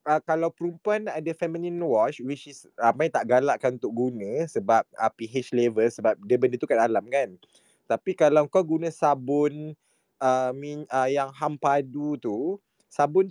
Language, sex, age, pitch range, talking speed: Malay, male, 20-39, 130-160 Hz, 170 wpm